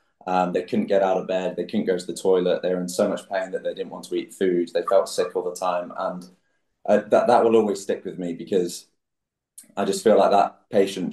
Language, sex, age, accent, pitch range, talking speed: English, male, 20-39, British, 90-110 Hz, 275 wpm